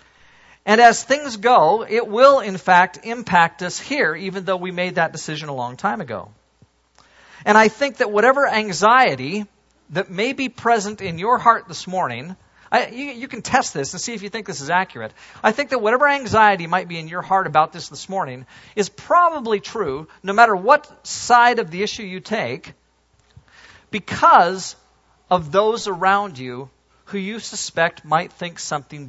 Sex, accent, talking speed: male, American, 175 wpm